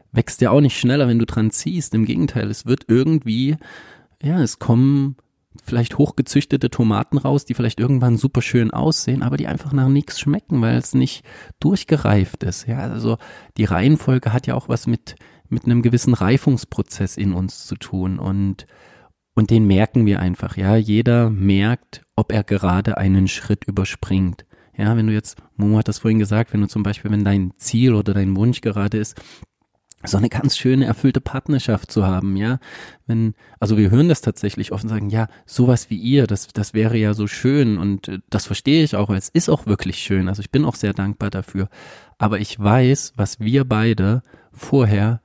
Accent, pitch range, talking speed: German, 105-130 Hz, 190 wpm